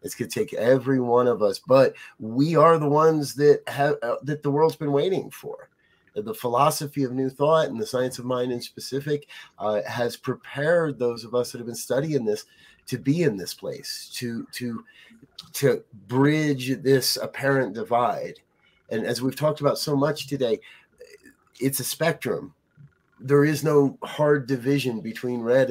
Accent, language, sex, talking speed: American, English, male, 175 wpm